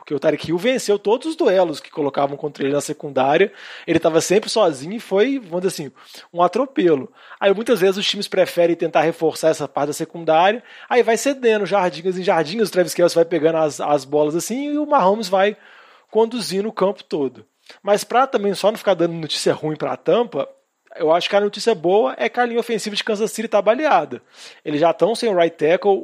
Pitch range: 160-210 Hz